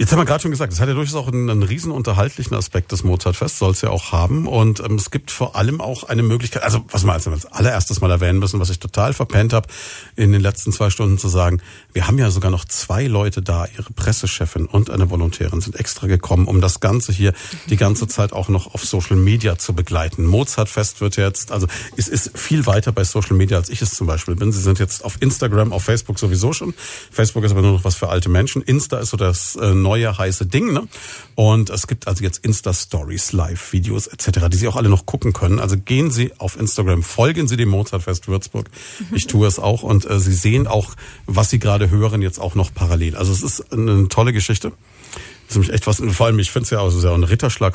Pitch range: 95-115 Hz